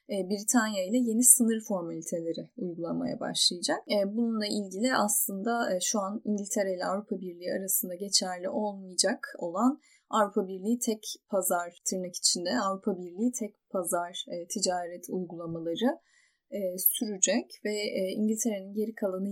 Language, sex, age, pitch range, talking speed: Turkish, female, 10-29, 190-230 Hz, 115 wpm